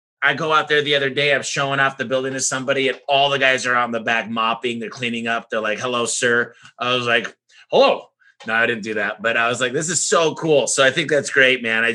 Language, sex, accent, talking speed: English, male, American, 270 wpm